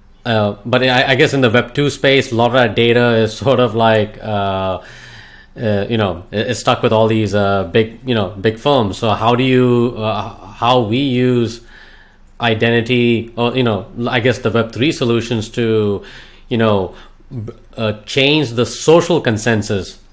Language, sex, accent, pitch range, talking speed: English, male, Indian, 110-130 Hz, 175 wpm